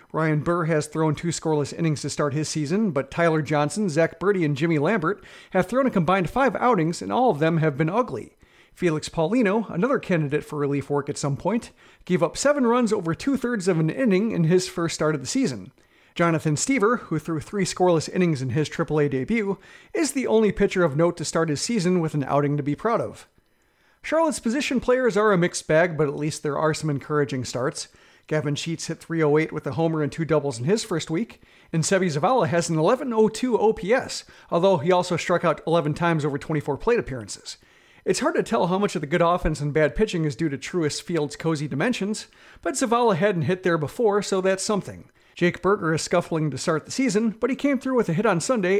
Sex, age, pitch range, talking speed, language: male, 40-59, 155-205 Hz, 220 wpm, English